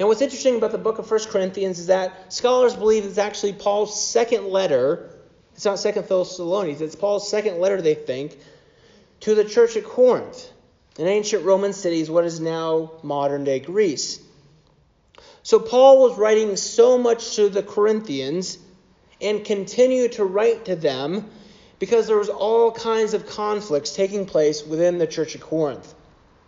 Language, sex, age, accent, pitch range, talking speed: English, male, 30-49, American, 155-220 Hz, 160 wpm